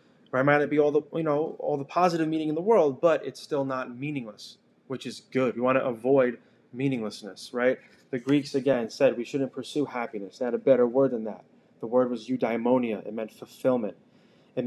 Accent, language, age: American, English, 20-39